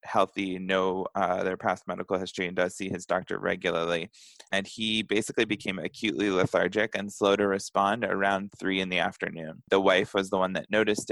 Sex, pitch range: male, 90-100 Hz